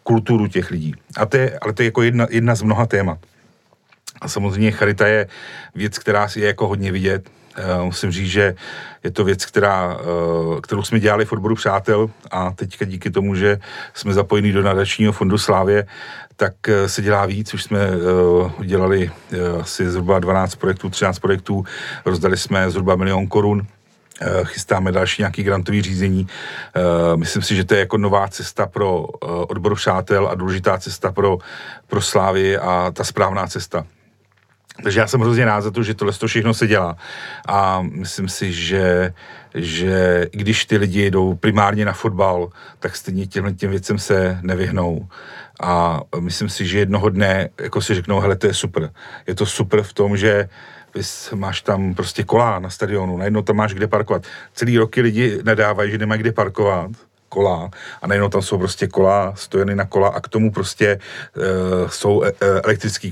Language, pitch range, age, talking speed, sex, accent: Czech, 95-105 Hz, 40-59, 170 wpm, male, native